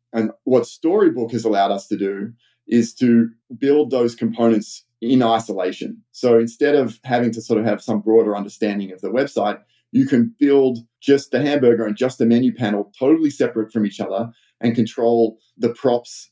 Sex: male